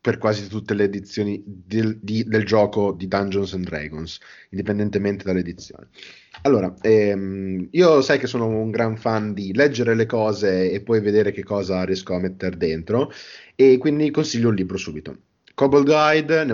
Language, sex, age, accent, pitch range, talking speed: Italian, male, 30-49, native, 100-115 Hz, 165 wpm